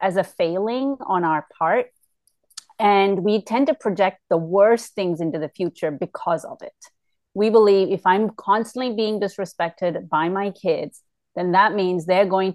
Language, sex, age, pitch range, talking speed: English, female, 30-49, 180-230 Hz, 165 wpm